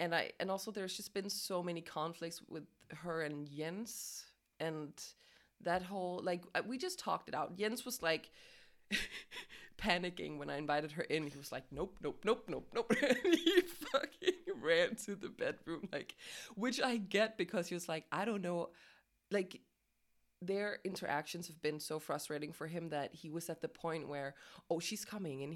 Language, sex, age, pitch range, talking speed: English, female, 20-39, 155-205 Hz, 185 wpm